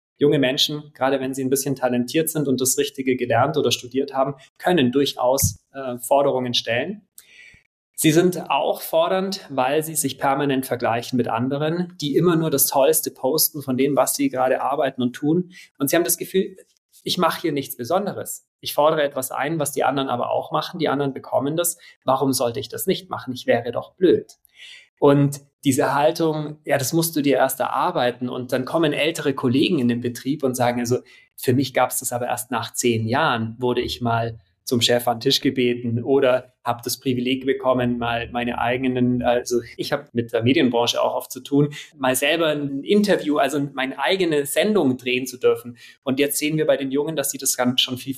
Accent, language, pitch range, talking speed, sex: German, German, 125-155 Hz, 200 wpm, male